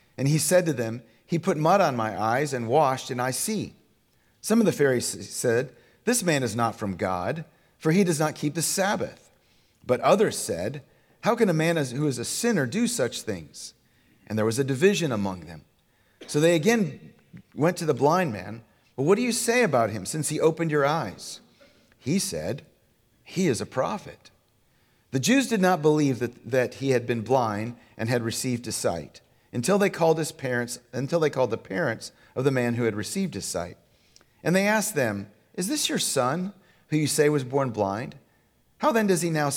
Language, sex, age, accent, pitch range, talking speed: English, male, 40-59, American, 120-185 Hz, 205 wpm